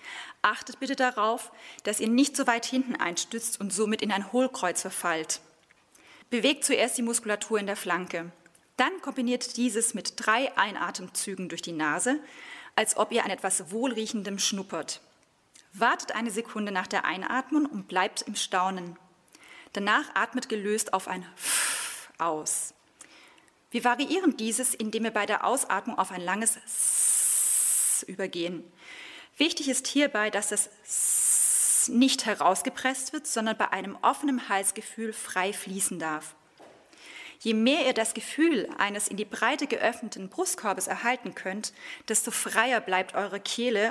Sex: female